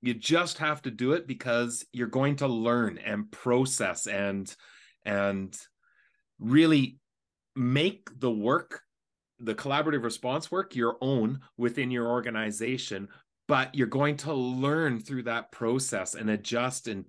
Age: 30-49